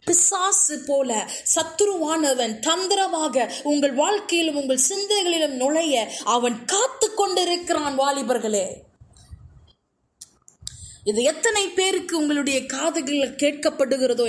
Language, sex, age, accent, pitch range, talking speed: Tamil, female, 20-39, native, 260-385 Hz, 80 wpm